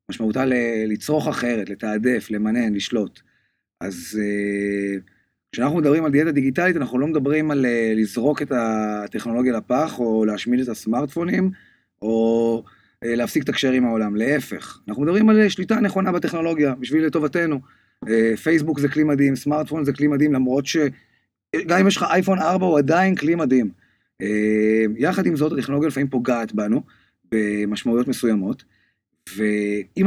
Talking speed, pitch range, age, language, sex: 150 wpm, 115-180 Hz, 30-49, Hebrew, male